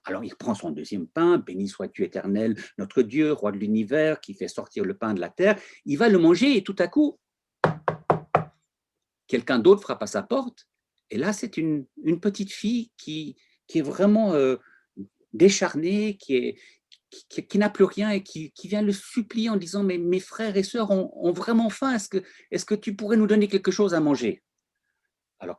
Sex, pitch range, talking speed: male, 170-240 Hz, 195 wpm